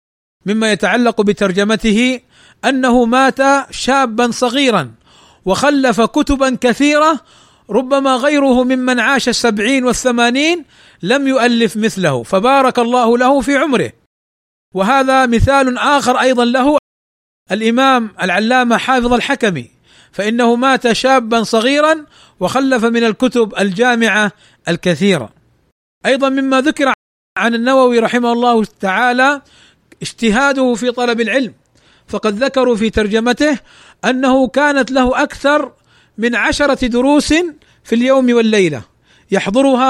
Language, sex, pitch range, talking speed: Arabic, male, 215-265 Hz, 105 wpm